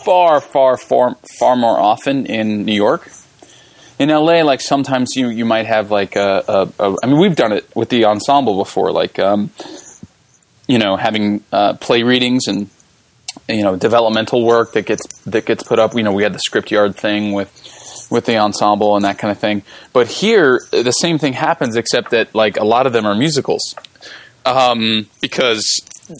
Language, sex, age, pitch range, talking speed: English, male, 20-39, 105-140 Hz, 190 wpm